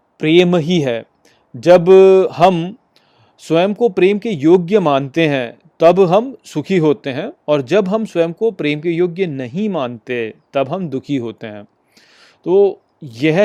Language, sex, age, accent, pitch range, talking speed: Hindi, male, 30-49, native, 145-200 Hz, 150 wpm